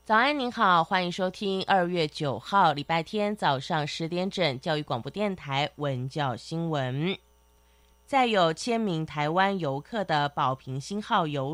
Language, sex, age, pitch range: Chinese, female, 20-39, 145-185 Hz